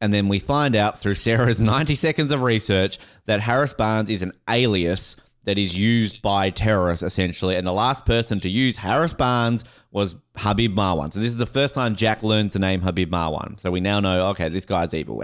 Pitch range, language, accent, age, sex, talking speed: 100-135 Hz, English, Australian, 20-39, male, 215 wpm